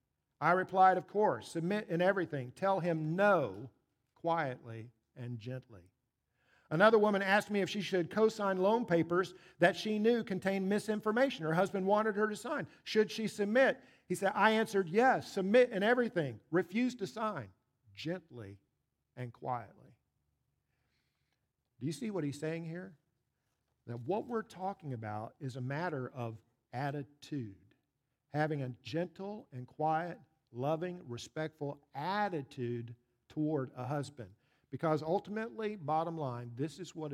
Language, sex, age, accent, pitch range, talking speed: English, male, 50-69, American, 130-190 Hz, 140 wpm